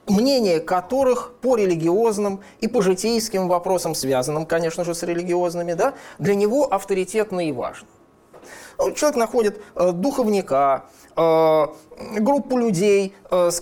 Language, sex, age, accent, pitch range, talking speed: Russian, male, 20-39, native, 160-215 Hz, 110 wpm